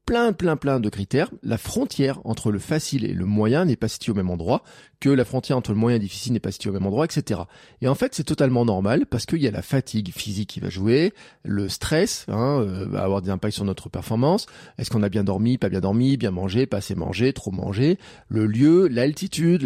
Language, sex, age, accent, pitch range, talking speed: French, male, 40-59, French, 105-150 Hz, 240 wpm